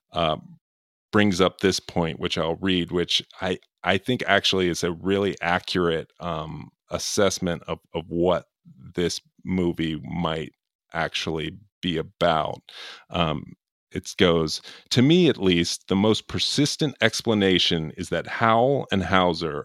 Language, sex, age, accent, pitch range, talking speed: English, male, 30-49, American, 85-105 Hz, 135 wpm